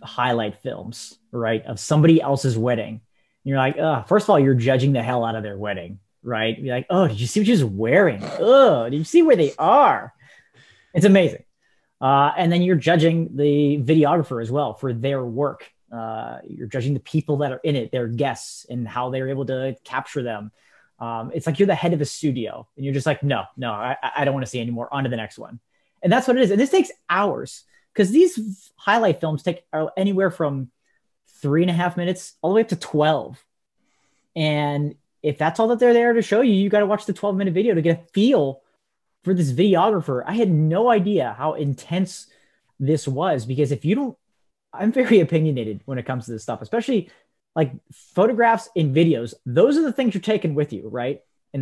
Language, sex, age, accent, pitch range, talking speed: English, male, 30-49, American, 130-185 Hz, 215 wpm